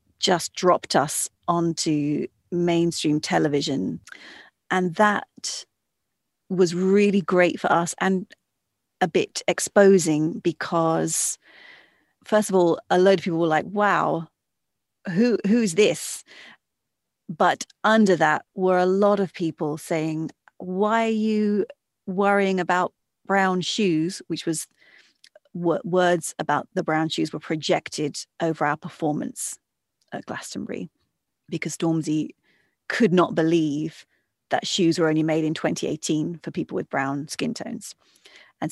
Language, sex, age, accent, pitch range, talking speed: English, female, 40-59, British, 155-185 Hz, 125 wpm